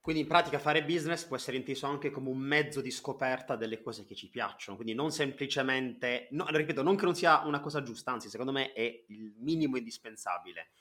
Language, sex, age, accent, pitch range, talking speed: Italian, male, 30-49, native, 120-150 Hz, 210 wpm